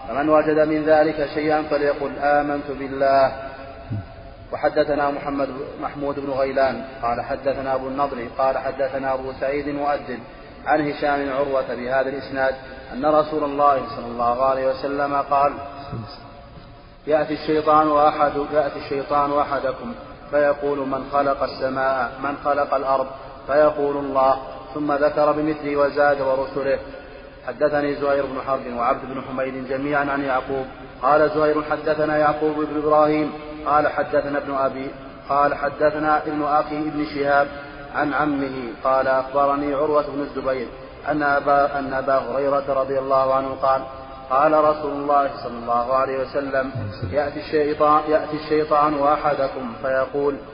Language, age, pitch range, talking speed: Arabic, 30-49, 135-145 Hz, 130 wpm